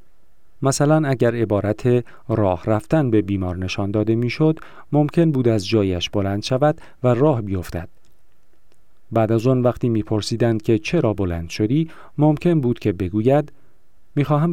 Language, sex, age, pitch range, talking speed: Persian, male, 40-59, 105-140 Hz, 135 wpm